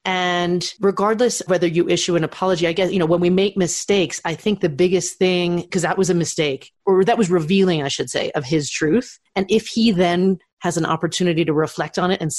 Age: 30-49